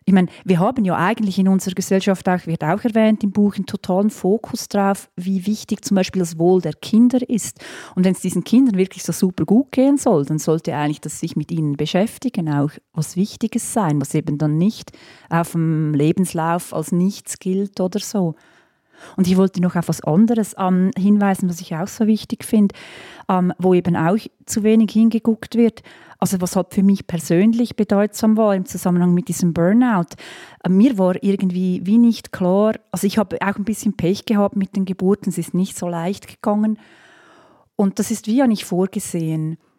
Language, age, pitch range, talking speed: German, 30-49, 180-220 Hz, 190 wpm